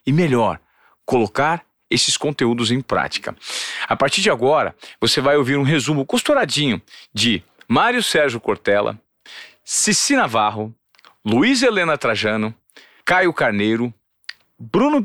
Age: 40-59